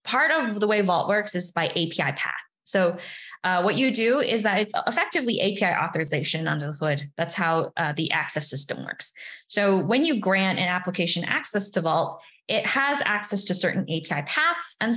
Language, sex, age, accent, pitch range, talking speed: English, female, 10-29, American, 170-225 Hz, 195 wpm